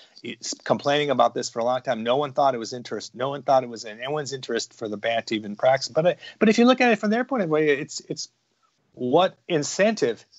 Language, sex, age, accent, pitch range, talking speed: English, male, 40-59, American, 115-145 Hz, 260 wpm